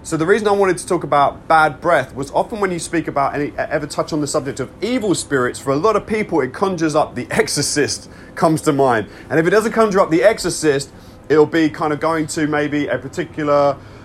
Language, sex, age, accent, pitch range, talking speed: English, male, 30-49, British, 120-160 Hz, 235 wpm